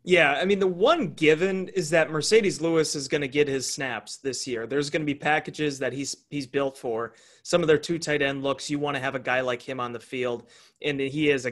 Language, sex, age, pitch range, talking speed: English, male, 30-49, 145-195 Hz, 260 wpm